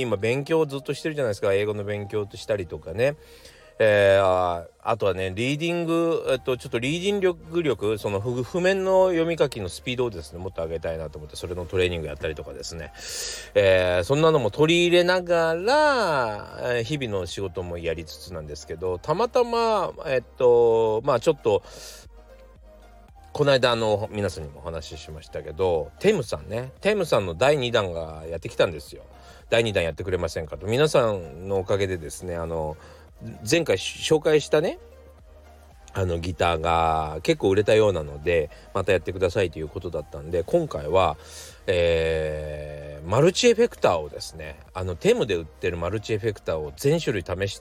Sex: male